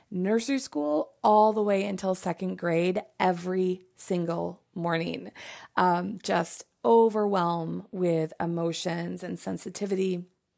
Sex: female